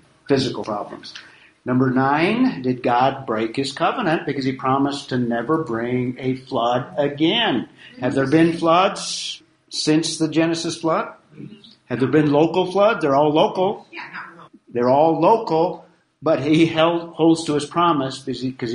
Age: 50-69